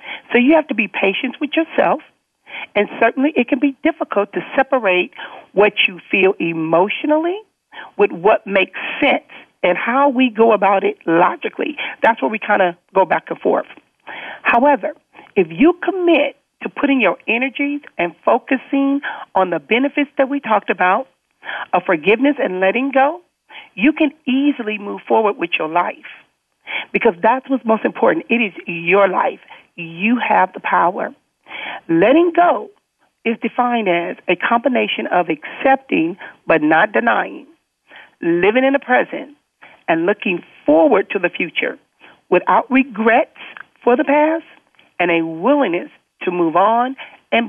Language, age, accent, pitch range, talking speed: English, 40-59, American, 200-290 Hz, 150 wpm